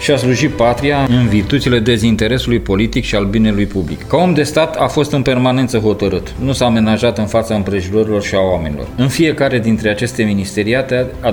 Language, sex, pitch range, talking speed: Romanian, male, 100-125 Hz, 190 wpm